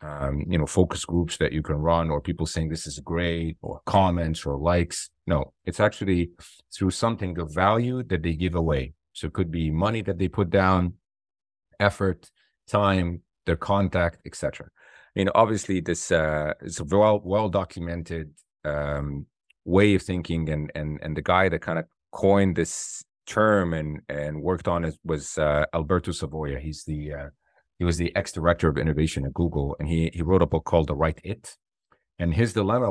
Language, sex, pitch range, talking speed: English, male, 75-95 Hz, 185 wpm